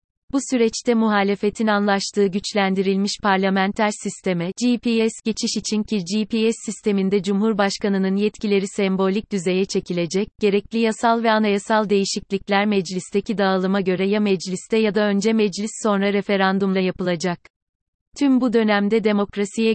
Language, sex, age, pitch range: Turkish, female, 30-49, 195-215 Hz